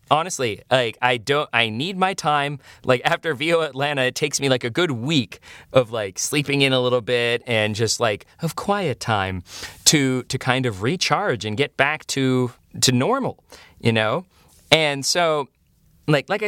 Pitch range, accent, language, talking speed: 125-165 Hz, American, English, 180 wpm